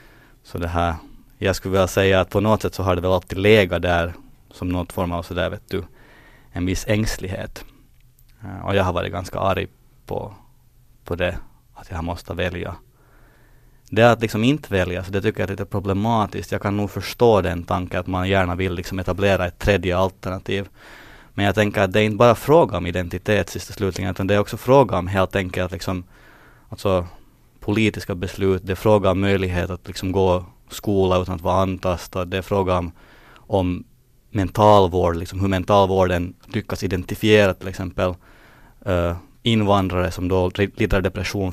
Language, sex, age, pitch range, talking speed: Finnish, male, 20-39, 90-105 Hz, 180 wpm